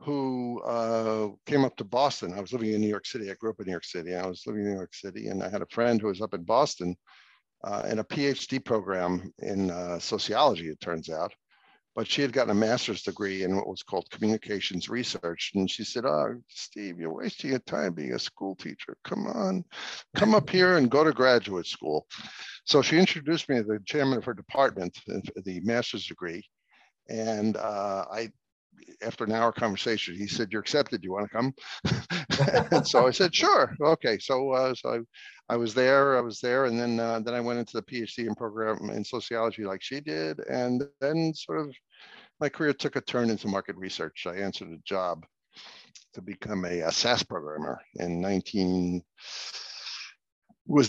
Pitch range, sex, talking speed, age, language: 100-135 Hz, male, 200 wpm, 60-79, English